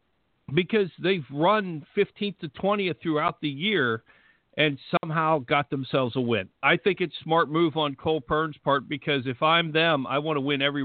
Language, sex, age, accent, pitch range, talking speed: English, male, 50-69, American, 135-165 Hz, 185 wpm